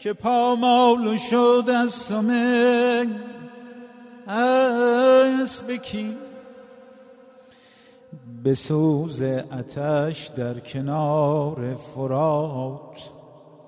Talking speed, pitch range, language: 55 wpm, 150-205 Hz, Persian